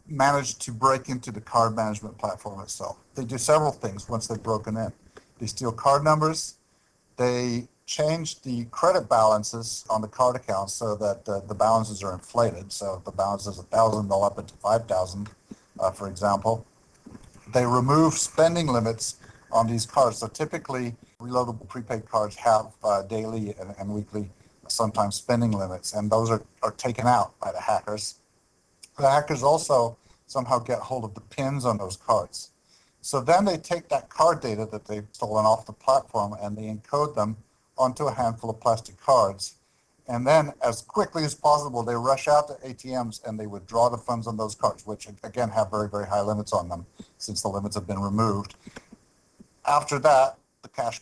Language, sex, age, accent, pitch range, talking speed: English, male, 50-69, American, 105-125 Hz, 180 wpm